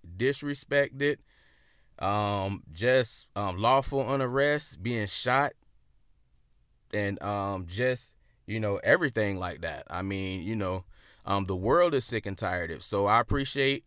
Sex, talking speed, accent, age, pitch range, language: male, 135 wpm, American, 30-49, 105-140 Hz, English